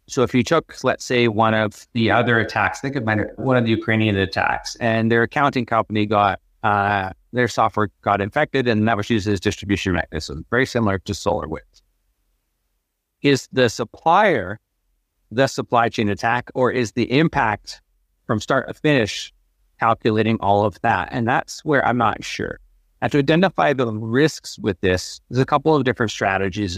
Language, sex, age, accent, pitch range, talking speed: English, male, 30-49, American, 100-125 Hz, 175 wpm